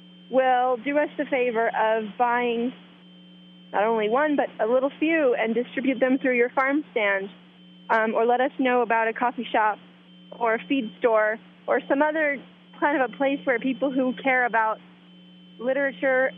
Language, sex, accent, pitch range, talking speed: English, female, American, 180-255 Hz, 170 wpm